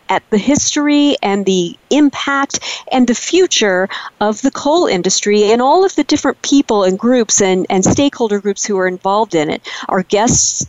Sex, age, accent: female, 40-59, American